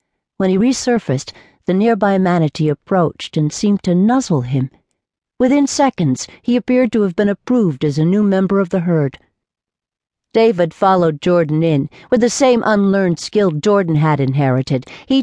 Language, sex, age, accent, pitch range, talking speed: English, female, 60-79, American, 155-205 Hz, 160 wpm